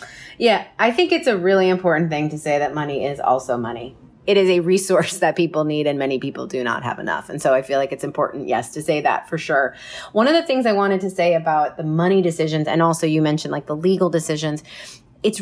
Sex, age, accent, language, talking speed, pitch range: female, 30-49, American, English, 245 wpm, 150-190 Hz